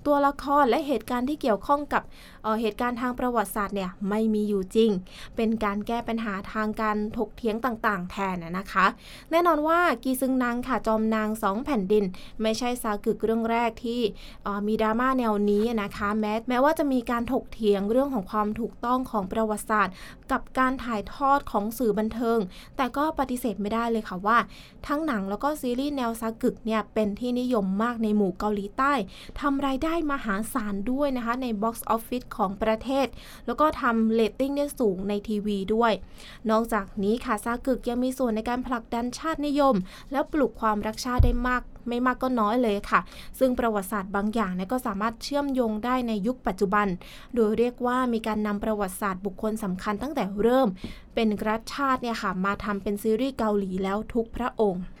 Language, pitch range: English, 210-255 Hz